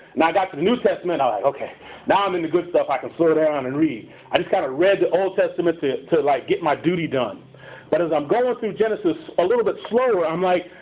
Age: 40-59